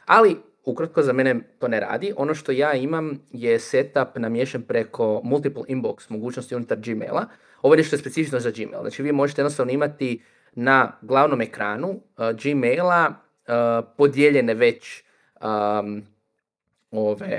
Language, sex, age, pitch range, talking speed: Croatian, male, 20-39, 120-160 Hz, 145 wpm